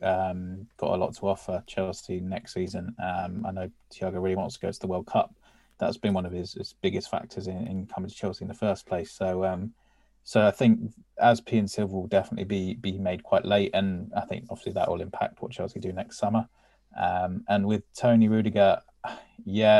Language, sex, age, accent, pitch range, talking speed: English, male, 20-39, British, 95-110 Hz, 220 wpm